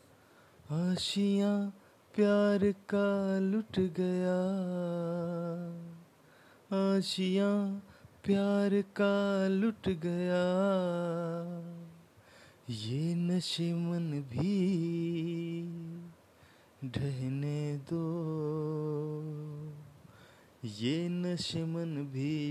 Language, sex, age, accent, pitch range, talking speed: Hindi, male, 30-49, native, 150-185 Hz, 50 wpm